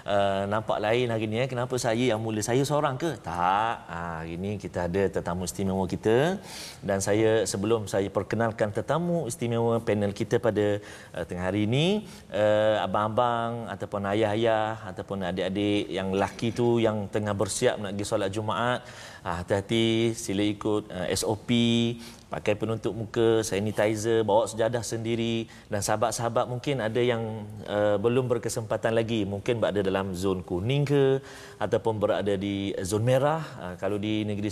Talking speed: 155 wpm